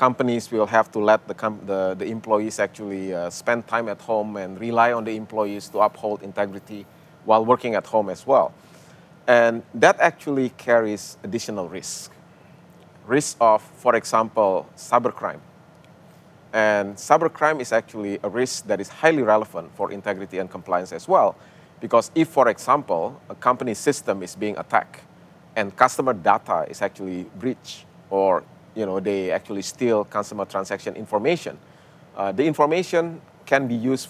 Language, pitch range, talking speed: English, 100-135 Hz, 155 wpm